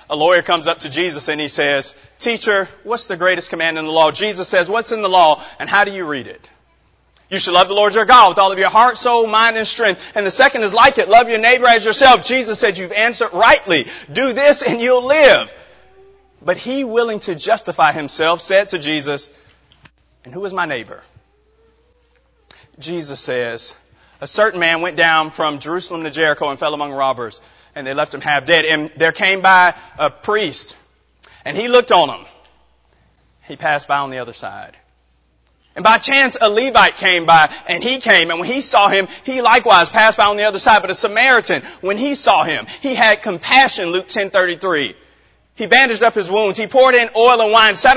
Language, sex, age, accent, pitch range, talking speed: English, male, 30-49, American, 165-240 Hz, 210 wpm